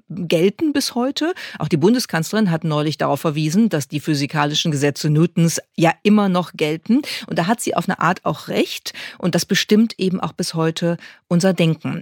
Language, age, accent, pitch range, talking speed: German, 40-59, German, 160-215 Hz, 185 wpm